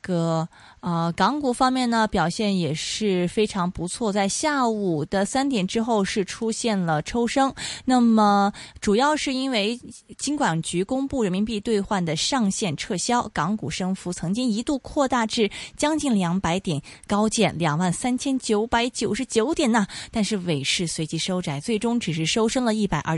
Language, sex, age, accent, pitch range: Chinese, female, 20-39, native, 175-245 Hz